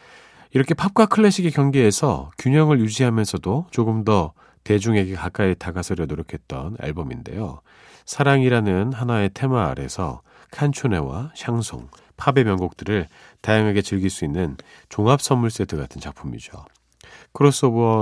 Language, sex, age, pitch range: Korean, male, 40-59, 85-135 Hz